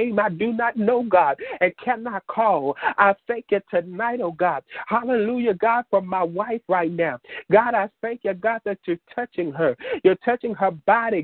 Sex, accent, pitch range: male, American, 195-235 Hz